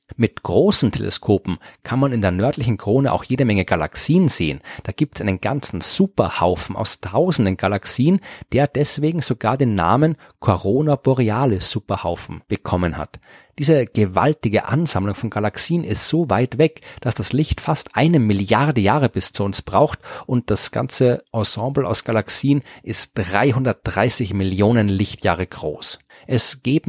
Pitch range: 105-140 Hz